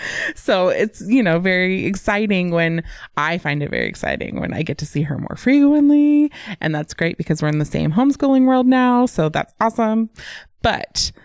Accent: American